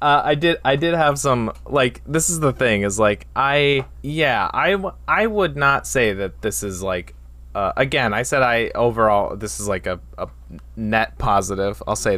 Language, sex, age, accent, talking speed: English, male, 20-39, American, 195 wpm